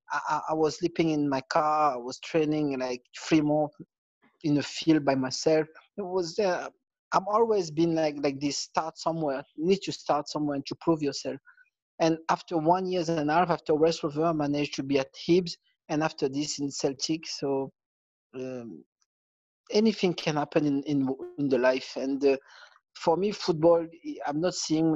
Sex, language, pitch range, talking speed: male, English, 140-165 Hz, 185 wpm